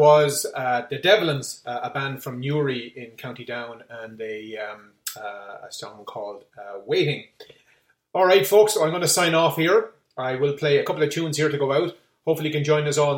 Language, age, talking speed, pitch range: English, 30-49, 220 wpm, 125-155 Hz